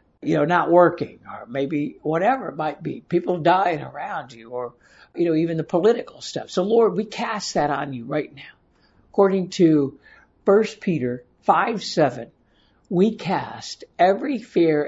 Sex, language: male, English